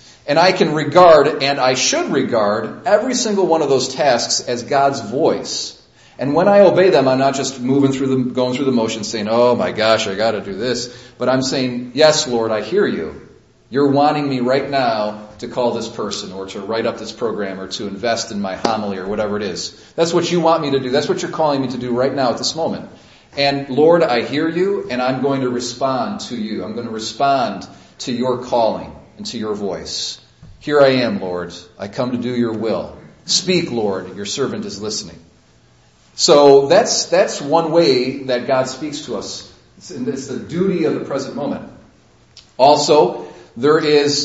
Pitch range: 115-145 Hz